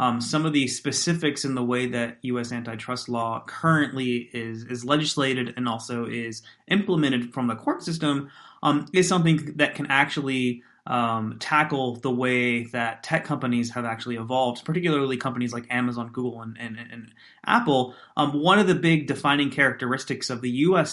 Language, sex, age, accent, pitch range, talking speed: English, male, 30-49, American, 120-140 Hz, 170 wpm